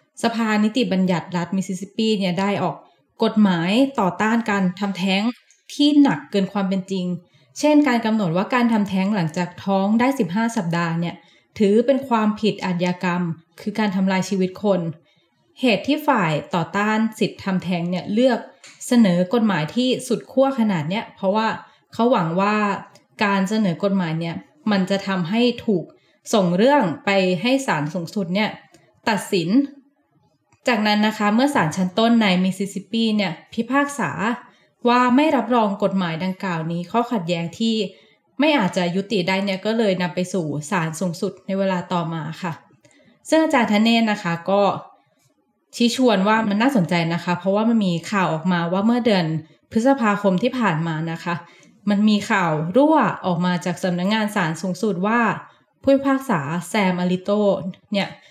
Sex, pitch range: female, 180-225 Hz